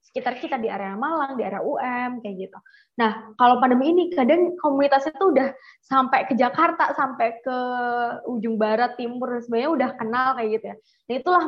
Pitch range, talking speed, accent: 225-275 Hz, 180 wpm, native